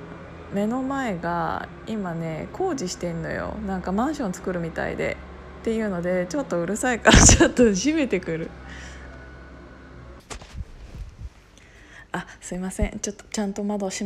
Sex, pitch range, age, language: female, 175-225 Hz, 20-39, Japanese